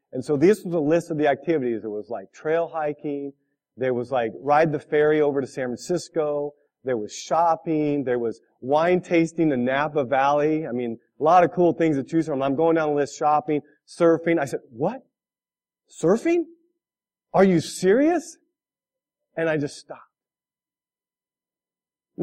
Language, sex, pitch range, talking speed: English, male, 140-185 Hz, 165 wpm